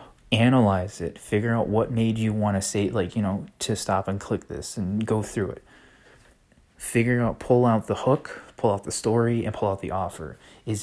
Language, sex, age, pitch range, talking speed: English, male, 20-39, 100-115 Hz, 210 wpm